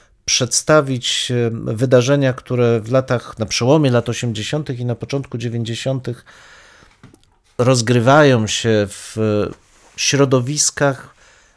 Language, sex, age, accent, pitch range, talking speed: Polish, male, 40-59, native, 110-140 Hz, 90 wpm